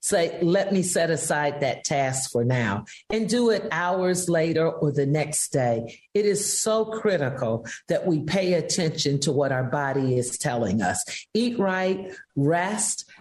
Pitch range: 135-185 Hz